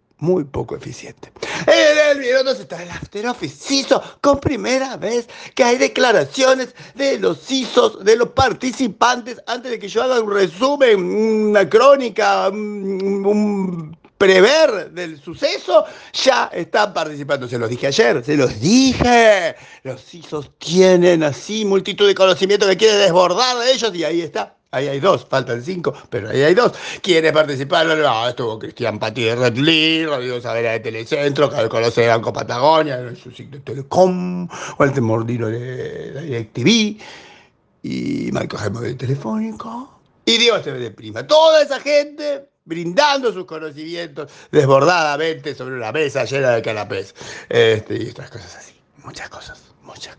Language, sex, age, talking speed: Spanish, male, 50-69, 150 wpm